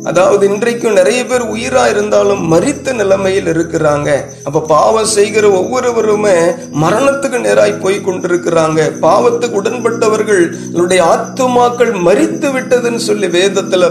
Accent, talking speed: native, 95 wpm